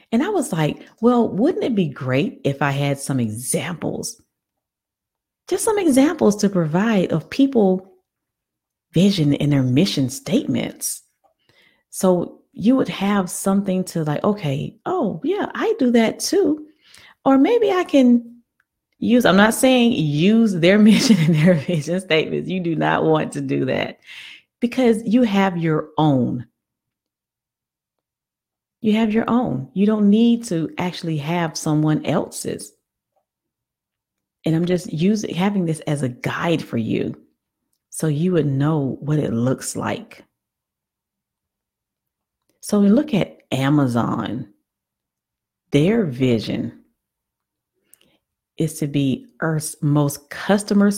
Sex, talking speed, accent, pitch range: female, 130 wpm, American, 145-215 Hz